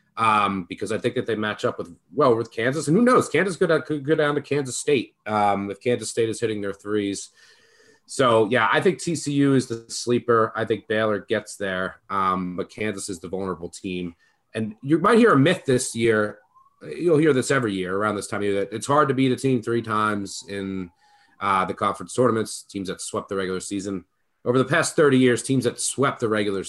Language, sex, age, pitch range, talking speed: English, male, 30-49, 95-135 Hz, 225 wpm